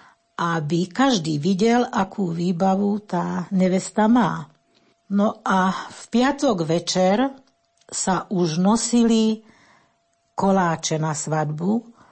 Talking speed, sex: 95 wpm, female